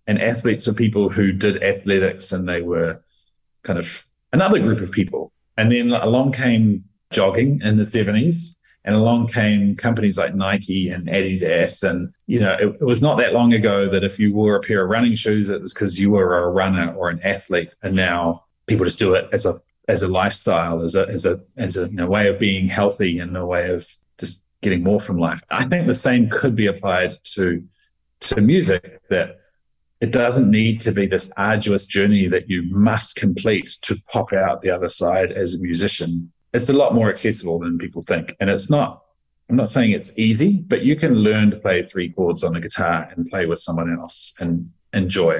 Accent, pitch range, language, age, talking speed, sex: Australian, 90-115 Hz, English, 30-49, 210 wpm, male